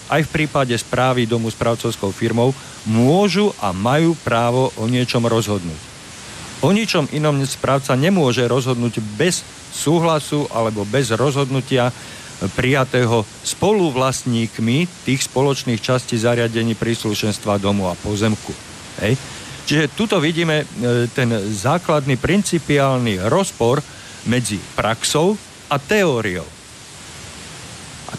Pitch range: 110-140 Hz